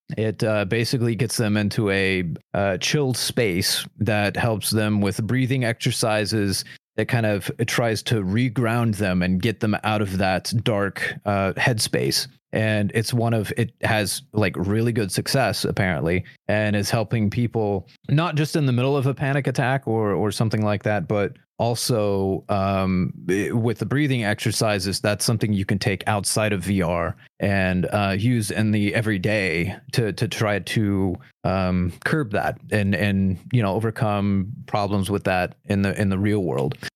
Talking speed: 165 wpm